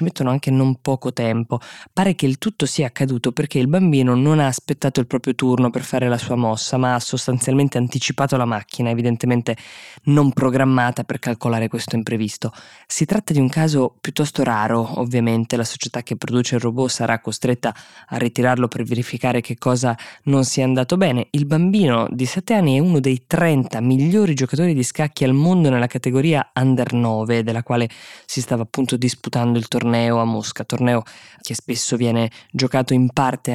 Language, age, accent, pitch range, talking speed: Italian, 20-39, native, 120-145 Hz, 180 wpm